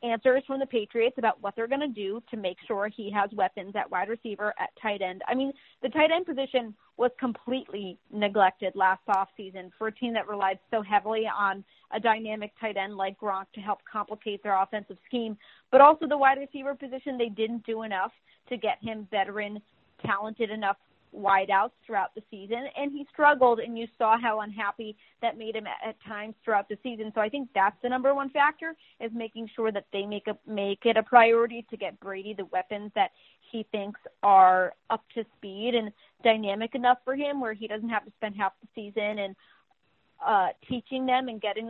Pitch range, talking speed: 205-255 Hz, 205 wpm